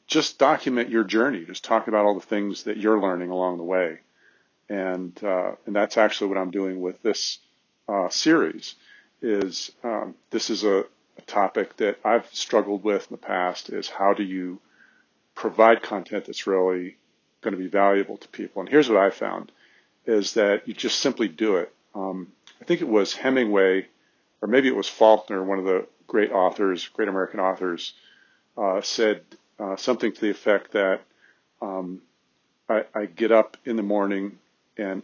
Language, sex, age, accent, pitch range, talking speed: English, male, 40-59, American, 95-110 Hz, 180 wpm